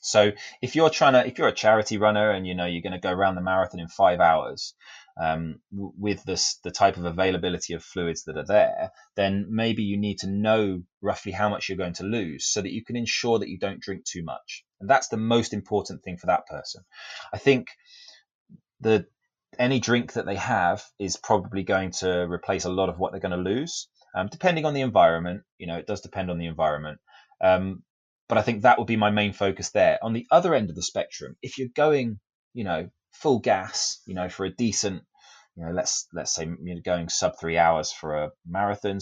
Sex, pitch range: male, 90-110 Hz